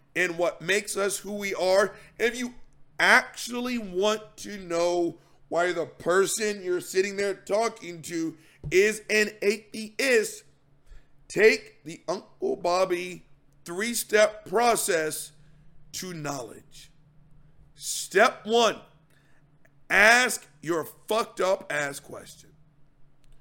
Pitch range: 150-210 Hz